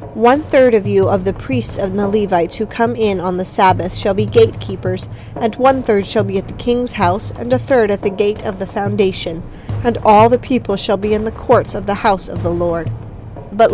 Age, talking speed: 40-59, 225 wpm